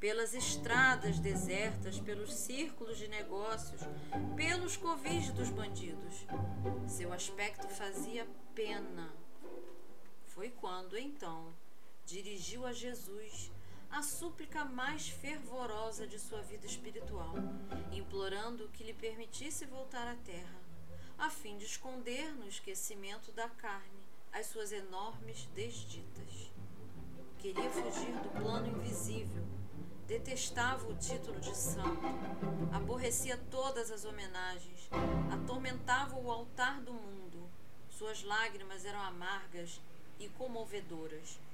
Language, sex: Portuguese, female